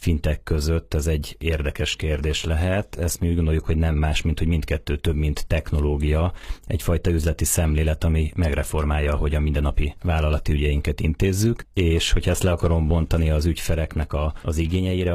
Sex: male